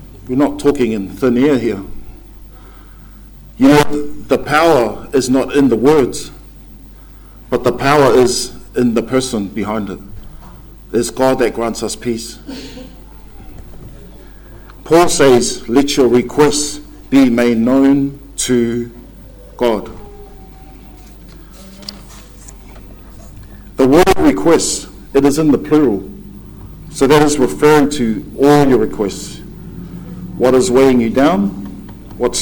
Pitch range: 105-140 Hz